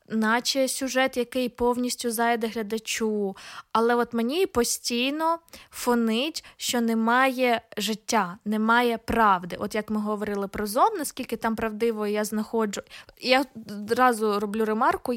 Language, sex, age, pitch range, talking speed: Ukrainian, female, 20-39, 215-265 Hz, 125 wpm